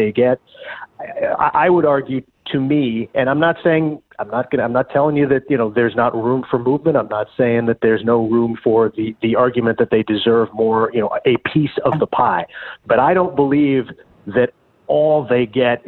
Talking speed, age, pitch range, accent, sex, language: 220 wpm, 40-59, 110-130 Hz, American, male, English